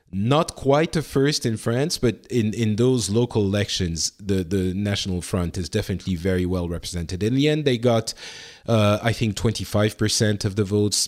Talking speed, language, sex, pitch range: 180 wpm, English, male, 95-120 Hz